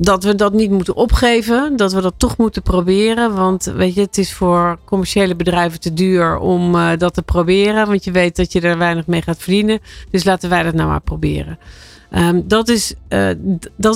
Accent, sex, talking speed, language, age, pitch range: Dutch, female, 195 wpm, Dutch, 50-69, 165-195 Hz